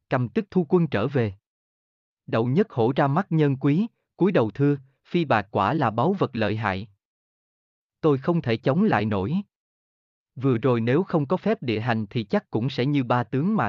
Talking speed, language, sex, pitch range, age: 200 wpm, Vietnamese, male, 110-165 Hz, 30-49